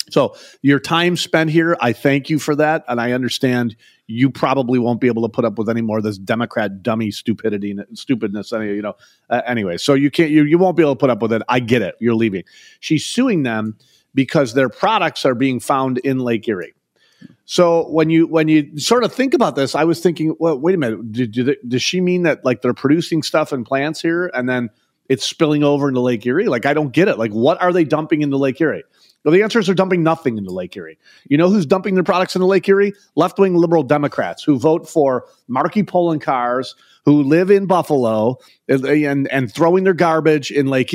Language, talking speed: English, 230 wpm